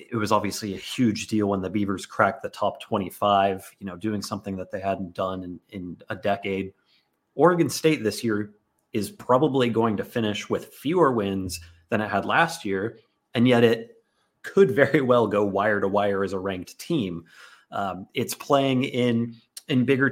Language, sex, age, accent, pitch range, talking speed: English, male, 30-49, American, 100-115 Hz, 185 wpm